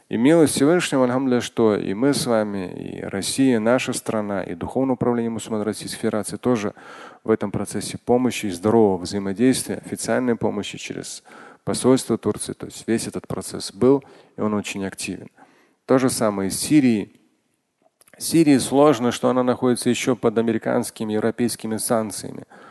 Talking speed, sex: 150 wpm, male